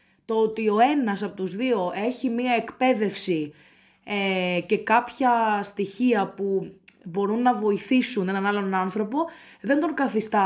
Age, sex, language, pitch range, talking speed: 20-39, female, Greek, 195-245 Hz, 130 wpm